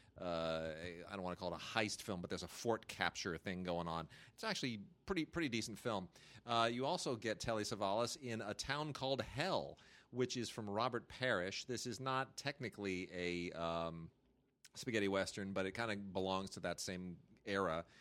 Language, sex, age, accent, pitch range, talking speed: English, male, 40-59, American, 95-125 Hz, 195 wpm